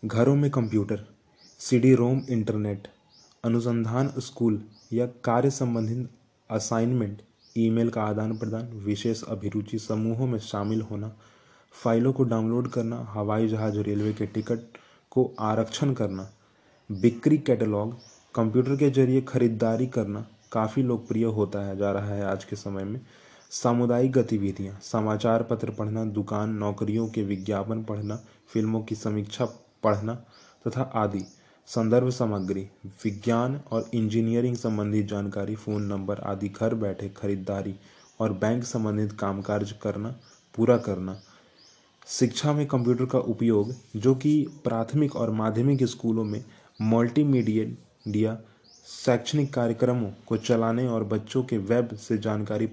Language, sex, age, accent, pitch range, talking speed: Hindi, male, 20-39, native, 105-120 Hz, 130 wpm